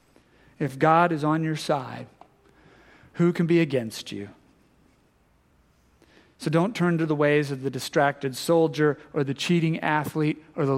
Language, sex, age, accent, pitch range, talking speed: English, male, 40-59, American, 130-160 Hz, 150 wpm